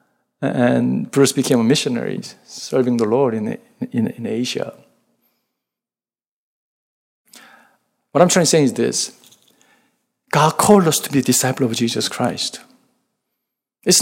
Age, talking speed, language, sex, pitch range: 50-69, 125 wpm, English, male, 130-195 Hz